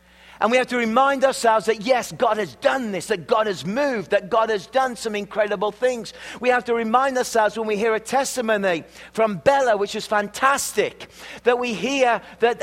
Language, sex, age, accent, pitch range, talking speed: English, male, 40-59, British, 190-250 Hz, 200 wpm